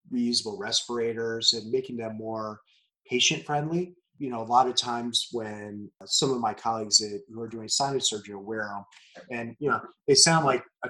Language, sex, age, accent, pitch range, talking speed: English, male, 30-49, American, 115-170 Hz, 185 wpm